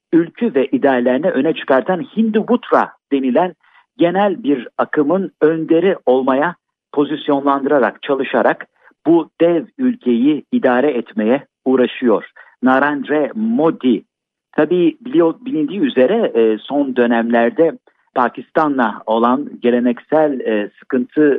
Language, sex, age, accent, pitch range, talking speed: Turkish, male, 50-69, native, 125-190 Hz, 90 wpm